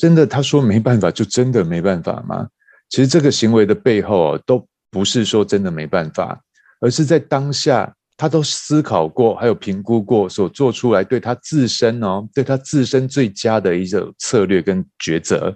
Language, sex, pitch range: Chinese, male, 100-135 Hz